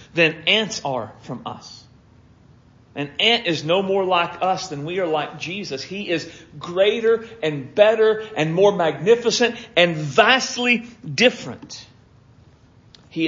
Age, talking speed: 40-59, 130 wpm